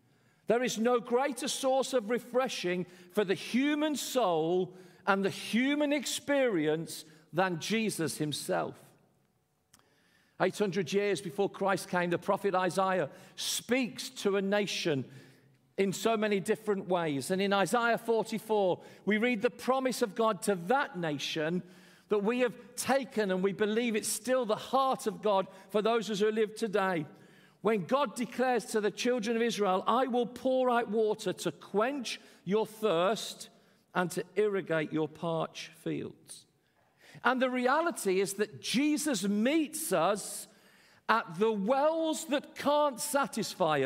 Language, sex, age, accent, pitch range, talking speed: English, male, 40-59, British, 180-245 Hz, 140 wpm